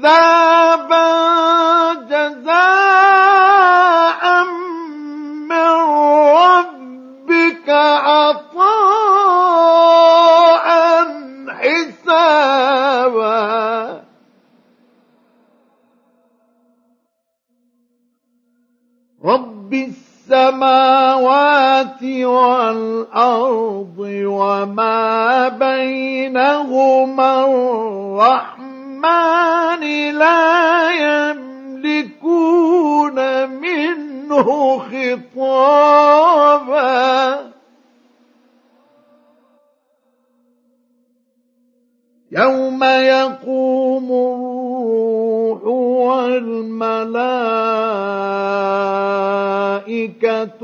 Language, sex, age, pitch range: Arabic, male, 50-69, 245-300 Hz